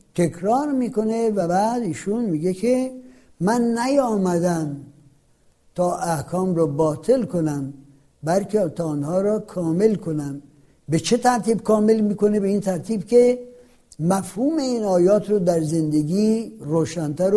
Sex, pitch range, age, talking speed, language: male, 160-225 Hz, 60-79, 125 wpm, Persian